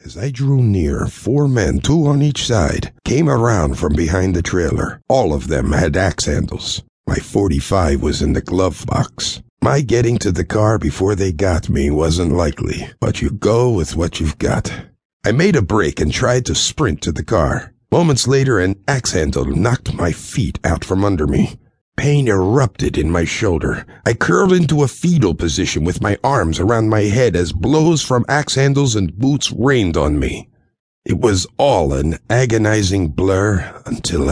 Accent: American